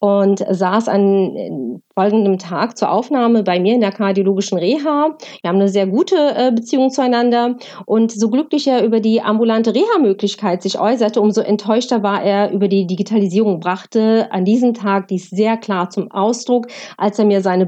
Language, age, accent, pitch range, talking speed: German, 40-59, German, 200-250 Hz, 175 wpm